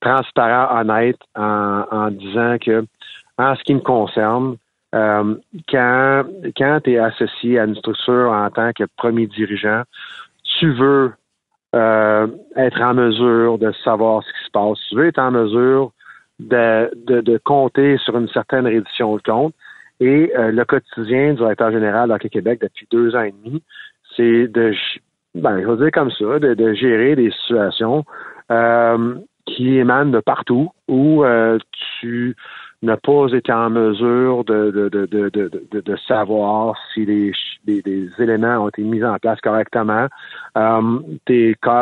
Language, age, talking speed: French, 50-69, 160 wpm